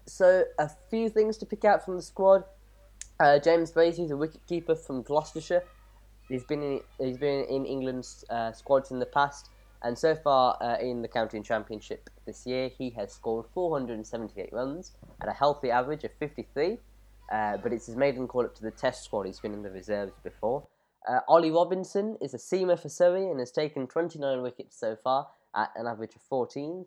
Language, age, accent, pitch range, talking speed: English, 10-29, British, 115-155 Hz, 190 wpm